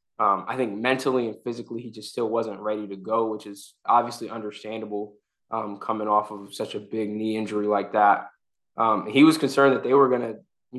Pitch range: 110-140 Hz